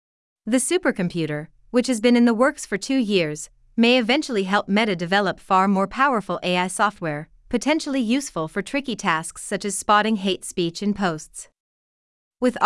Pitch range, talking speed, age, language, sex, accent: 175-245 Hz, 160 wpm, 30-49, English, female, American